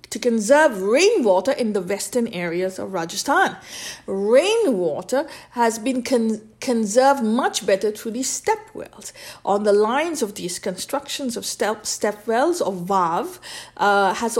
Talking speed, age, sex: 140 wpm, 50-69, female